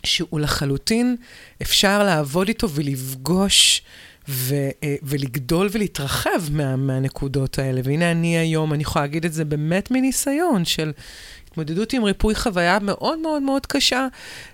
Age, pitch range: 30-49, 155-220 Hz